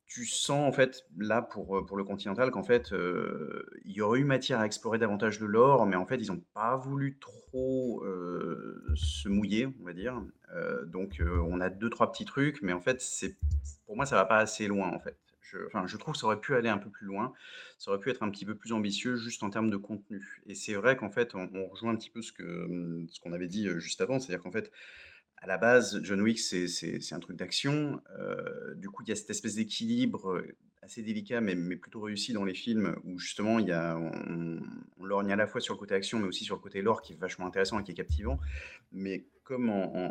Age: 30-49